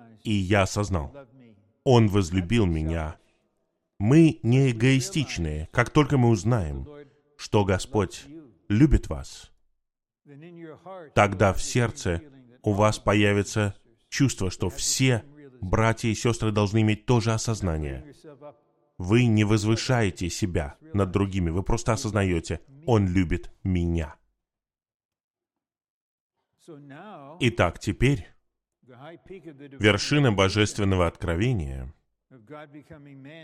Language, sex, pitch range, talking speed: Russian, male, 95-125 Hz, 90 wpm